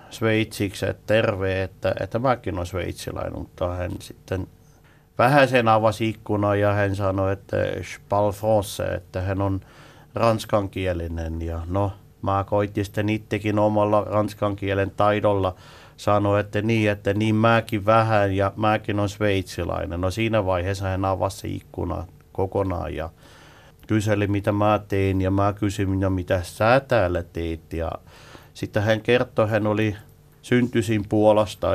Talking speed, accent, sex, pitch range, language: 135 wpm, native, male, 95-110 Hz, Finnish